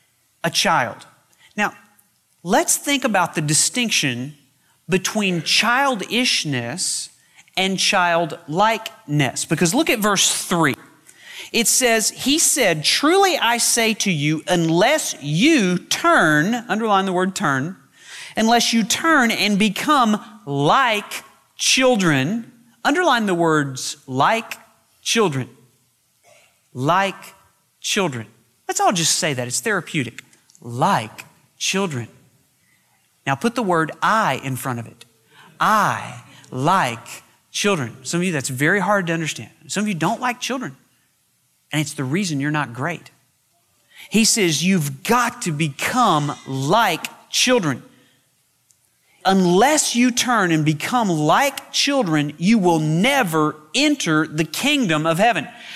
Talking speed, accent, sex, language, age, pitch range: 120 wpm, American, male, English, 40-59, 150-235 Hz